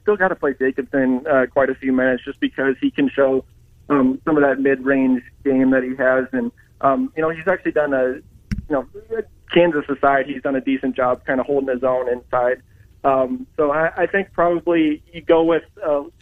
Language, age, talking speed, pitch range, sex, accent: English, 30-49, 210 wpm, 130-145 Hz, male, American